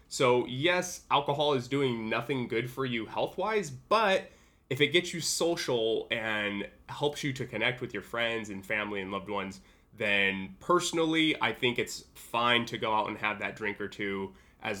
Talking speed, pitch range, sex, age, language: 180 wpm, 100-160 Hz, male, 20-39, English